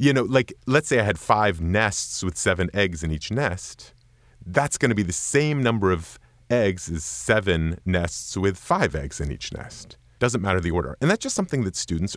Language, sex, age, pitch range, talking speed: English, male, 30-49, 90-135 Hz, 210 wpm